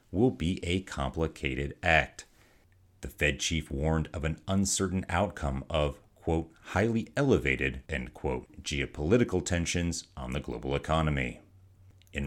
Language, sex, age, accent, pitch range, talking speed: English, male, 40-59, American, 75-100 Hz, 125 wpm